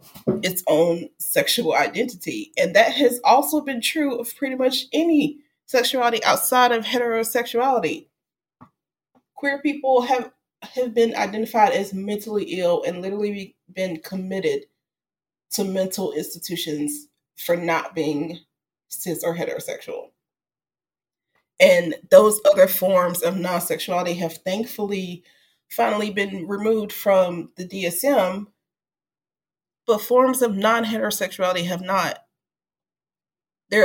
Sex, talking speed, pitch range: female, 110 wpm, 180-255 Hz